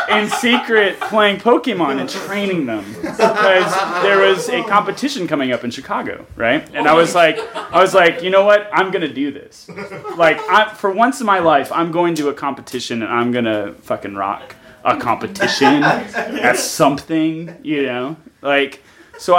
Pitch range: 130-180 Hz